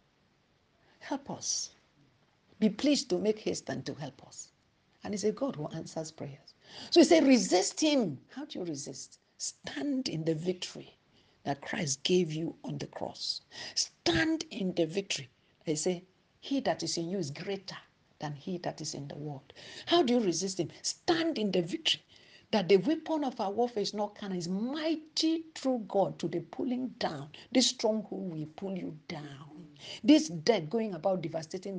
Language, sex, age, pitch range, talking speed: English, female, 60-79, 165-245 Hz, 180 wpm